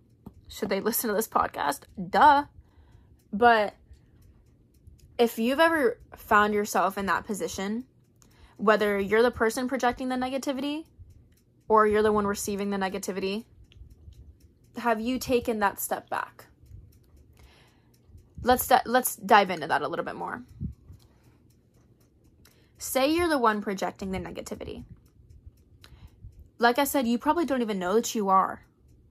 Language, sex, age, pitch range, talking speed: English, female, 10-29, 195-230 Hz, 130 wpm